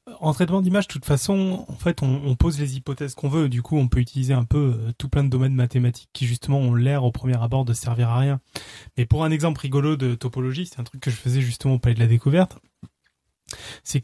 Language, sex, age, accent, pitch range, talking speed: French, male, 20-39, French, 120-145 Hz, 245 wpm